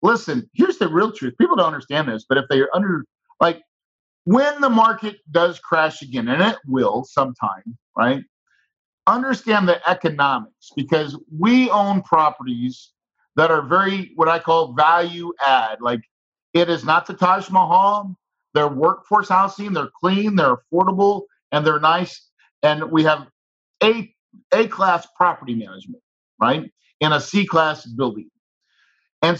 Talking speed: 145 wpm